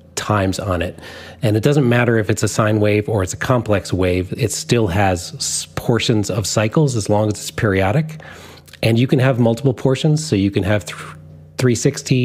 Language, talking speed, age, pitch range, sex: English, 195 wpm, 30-49, 90-120 Hz, male